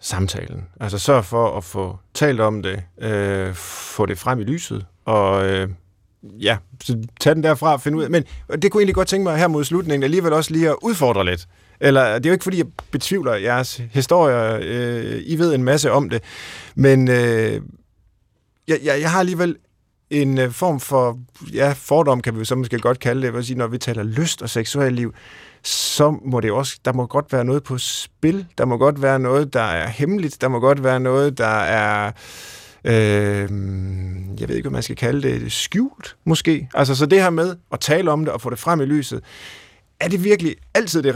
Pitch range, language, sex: 110-150 Hz, Danish, male